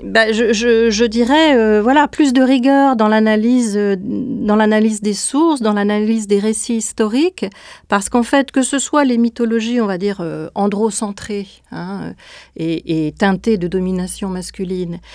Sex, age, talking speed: female, 40-59, 160 wpm